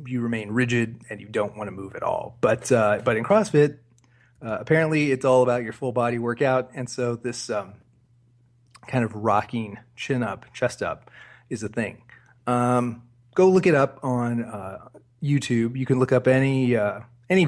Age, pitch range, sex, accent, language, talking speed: 30-49, 115-135 Hz, male, American, English, 180 wpm